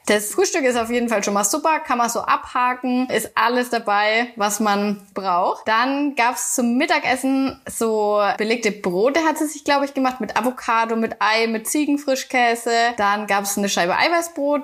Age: 20-39